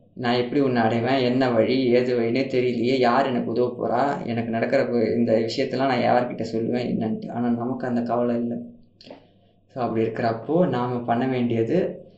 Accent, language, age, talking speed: native, Tamil, 20-39, 155 wpm